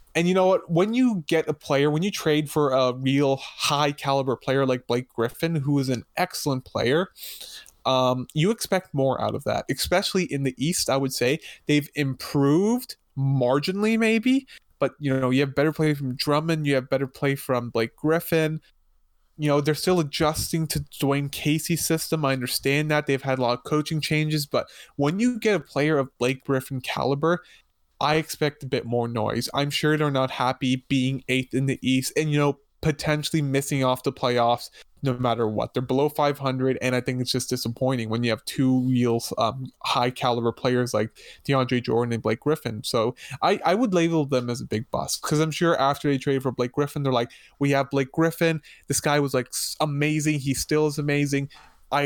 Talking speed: 200 wpm